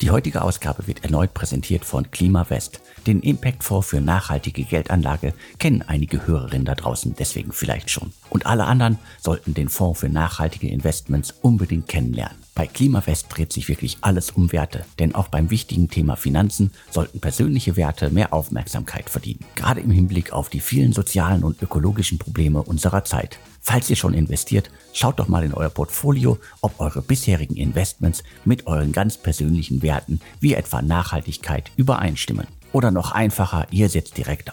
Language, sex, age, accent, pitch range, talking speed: German, male, 50-69, German, 80-105 Hz, 160 wpm